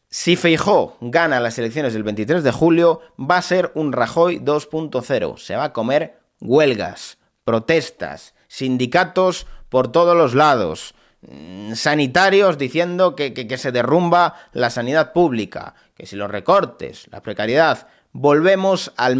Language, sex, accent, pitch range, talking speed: Spanish, male, Spanish, 125-180 Hz, 140 wpm